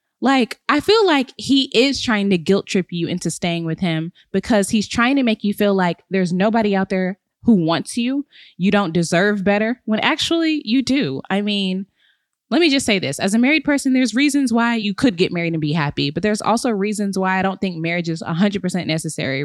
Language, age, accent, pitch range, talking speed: English, 10-29, American, 175-230 Hz, 220 wpm